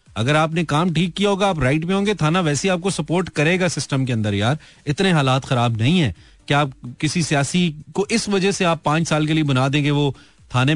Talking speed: 235 wpm